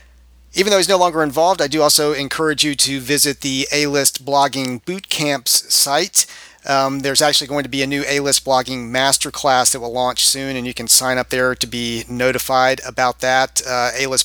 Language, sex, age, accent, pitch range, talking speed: English, male, 40-59, American, 120-145 Hz, 200 wpm